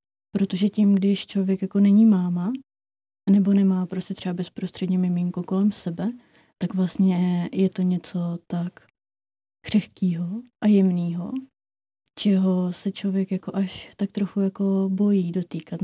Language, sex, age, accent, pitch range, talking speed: Czech, female, 20-39, native, 180-200 Hz, 130 wpm